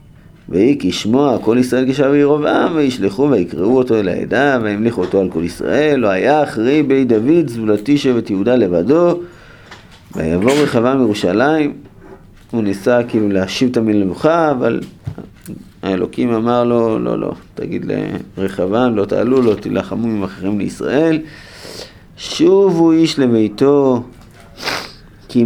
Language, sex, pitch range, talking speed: Hebrew, male, 110-150 Hz, 130 wpm